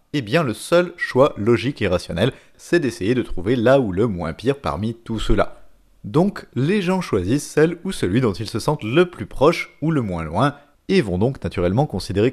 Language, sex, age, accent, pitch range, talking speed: French, male, 30-49, French, 110-160 Hz, 215 wpm